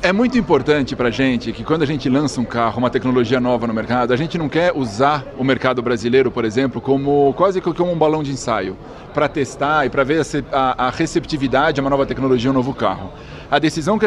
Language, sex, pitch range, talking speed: Portuguese, male, 130-160 Hz, 220 wpm